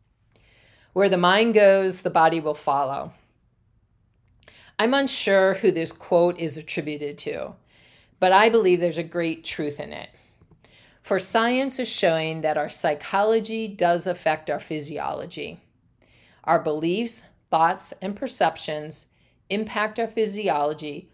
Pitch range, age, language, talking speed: 160-210 Hz, 50-69, English, 125 wpm